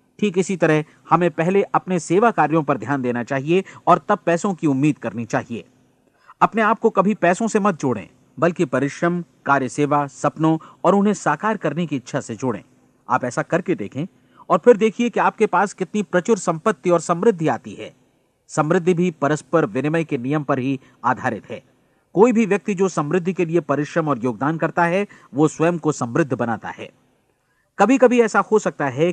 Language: Hindi